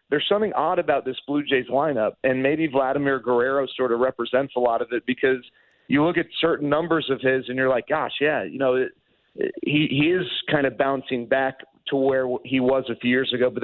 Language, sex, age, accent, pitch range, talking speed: English, male, 40-59, American, 125-150 Hz, 220 wpm